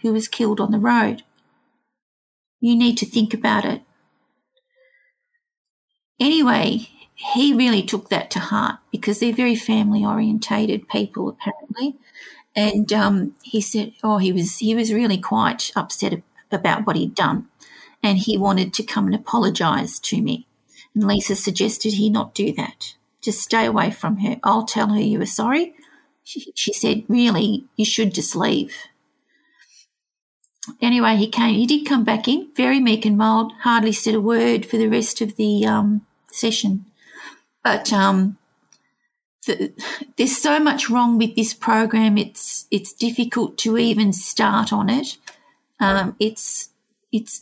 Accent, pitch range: Australian, 210-255 Hz